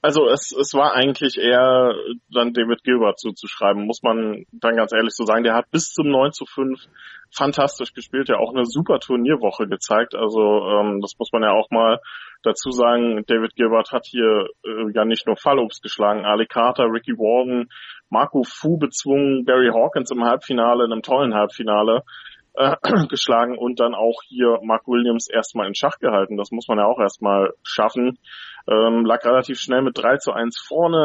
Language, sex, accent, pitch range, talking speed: German, male, German, 115-135 Hz, 180 wpm